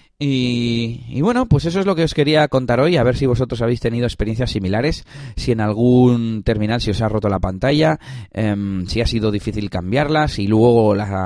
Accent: Spanish